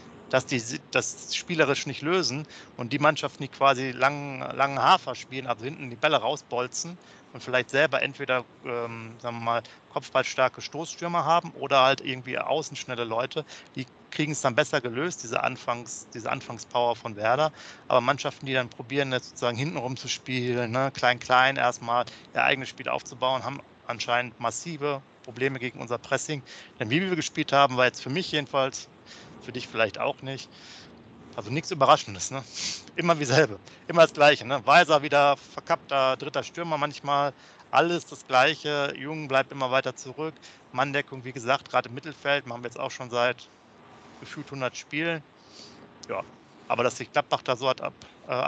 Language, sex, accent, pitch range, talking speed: German, male, German, 125-145 Hz, 170 wpm